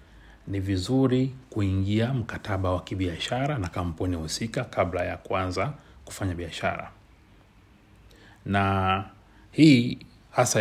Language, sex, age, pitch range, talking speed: Swahili, male, 40-59, 95-115 Hz, 95 wpm